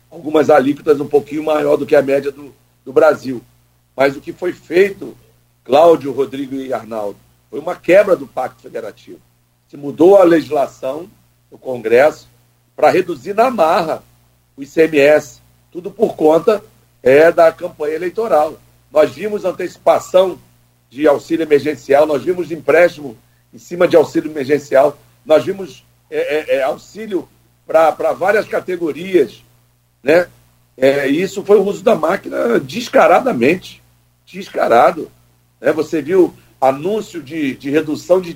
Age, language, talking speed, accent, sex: 60-79, Portuguese, 135 wpm, Brazilian, male